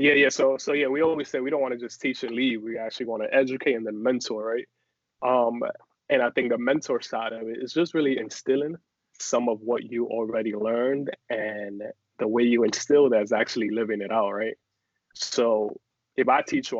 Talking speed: 220 wpm